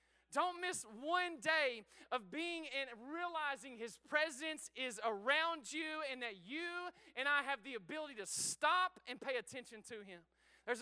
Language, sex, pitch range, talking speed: English, male, 245-320 Hz, 160 wpm